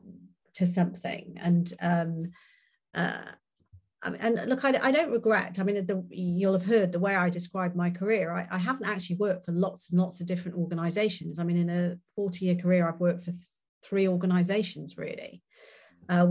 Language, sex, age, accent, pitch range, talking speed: English, female, 40-59, British, 175-215 Hz, 175 wpm